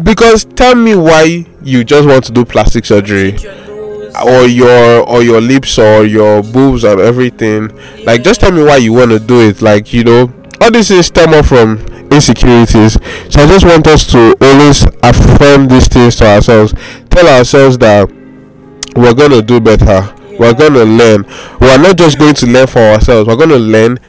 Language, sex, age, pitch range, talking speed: English, male, 20-39, 115-140 Hz, 190 wpm